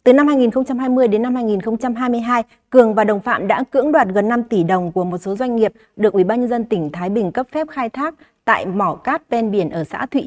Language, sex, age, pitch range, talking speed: Vietnamese, female, 20-39, 195-250 Hz, 245 wpm